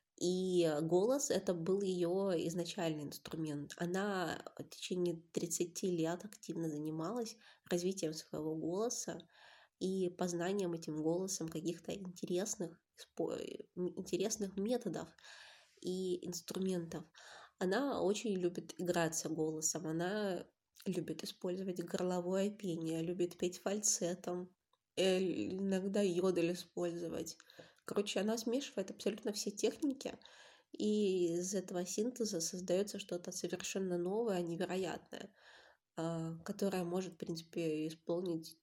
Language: Russian